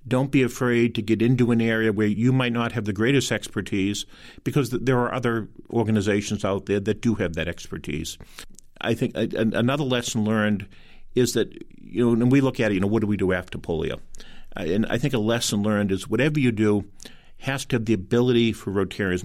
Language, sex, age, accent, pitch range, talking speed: English, male, 50-69, American, 90-115 Hz, 210 wpm